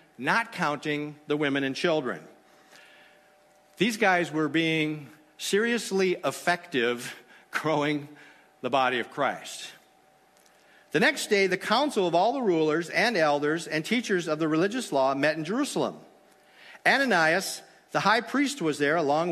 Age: 50-69